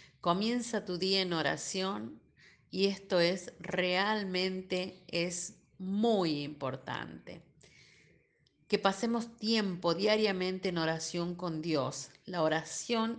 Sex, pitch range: female, 170-210 Hz